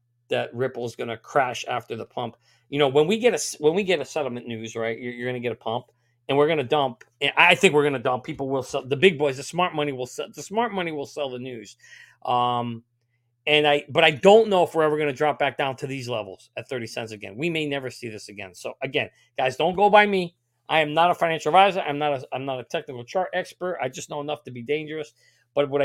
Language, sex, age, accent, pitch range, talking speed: English, male, 40-59, American, 125-180 Hz, 270 wpm